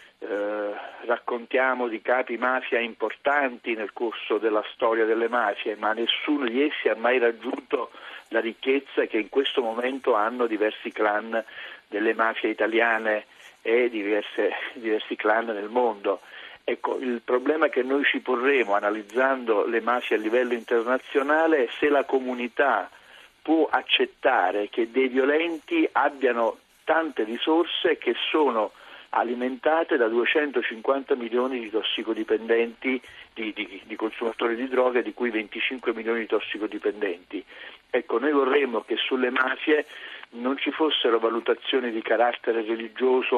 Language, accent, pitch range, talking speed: Italian, native, 115-145 Hz, 130 wpm